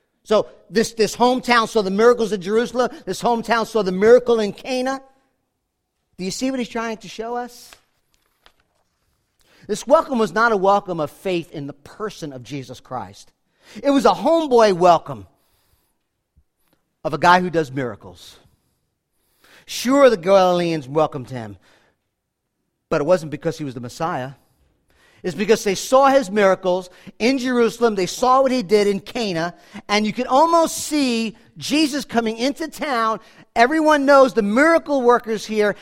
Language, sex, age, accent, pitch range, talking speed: English, male, 50-69, American, 180-265 Hz, 155 wpm